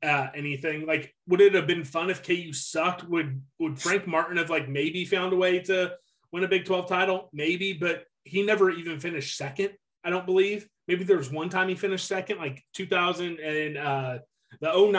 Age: 30-49